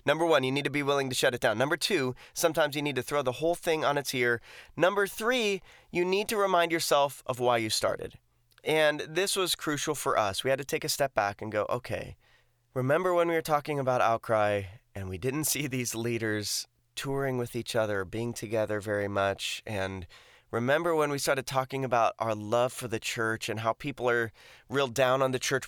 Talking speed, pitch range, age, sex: 215 wpm, 120-155 Hz, 20-39, male